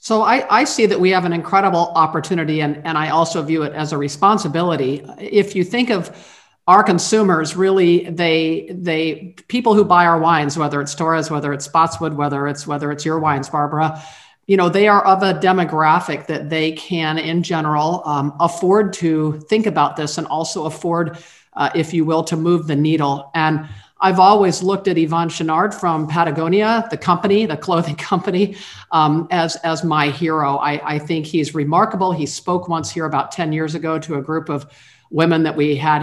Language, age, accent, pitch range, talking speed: English, 50-69, American, 155-190 Hz, 190 wpm